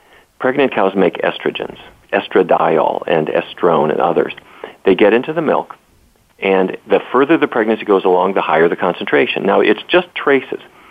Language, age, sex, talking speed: English, 40-59, male, 160 wpm